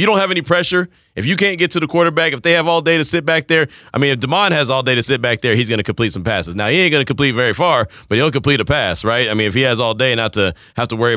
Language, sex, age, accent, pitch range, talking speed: English, male, 30-49, American, 110-135 Hz, 345 wpm